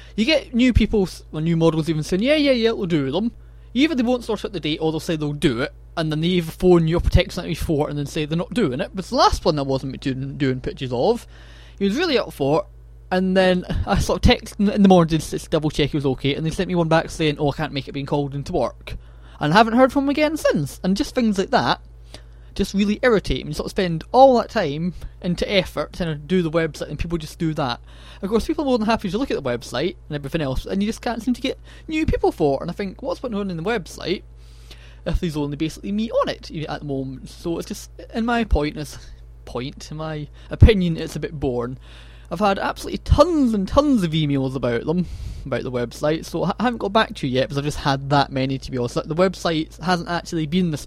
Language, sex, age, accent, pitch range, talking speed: English, male, 20-39, British, 135-195 Hz, 260 wpm